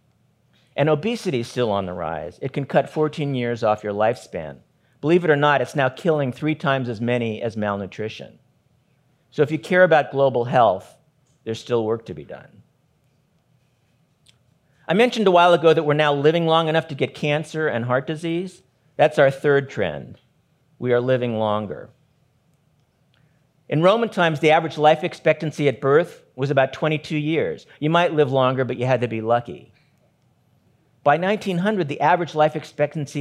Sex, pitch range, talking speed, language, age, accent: male, 130-160 Hz, 170 wpm, English, 50-69, American